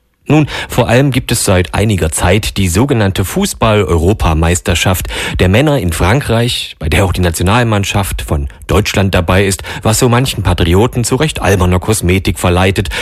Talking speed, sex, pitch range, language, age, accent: 150 wpm, male, 90-115 Hz, German, 40-59, German